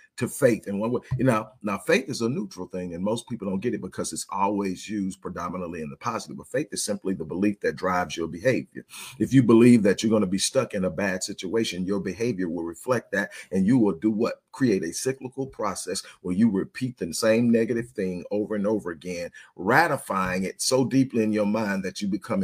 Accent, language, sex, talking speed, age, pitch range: American, English, male, 225 wpm, 40-59, 95-115 Hz